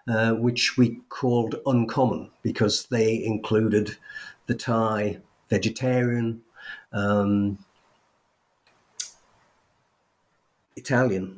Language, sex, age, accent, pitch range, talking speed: English, male, 50-69, British, 110-125 Hz, 70 wpm